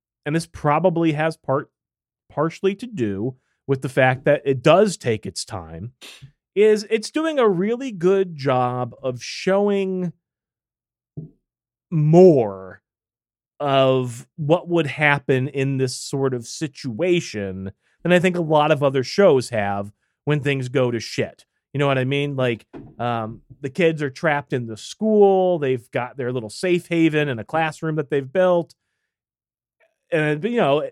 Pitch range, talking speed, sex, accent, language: 120-165 Hz, 155 wpm, male, American, English